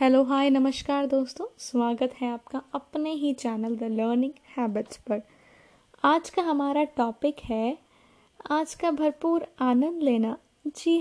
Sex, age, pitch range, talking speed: female, 20-39, 240-310 Hz, 135 wpm